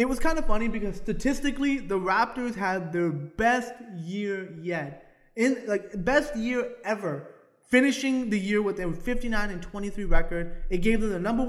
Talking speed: 170 wpm